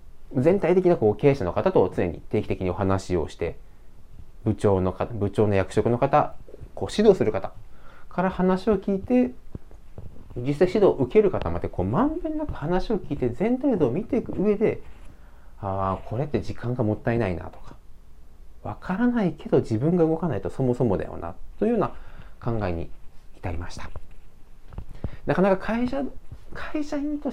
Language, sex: Japanese, male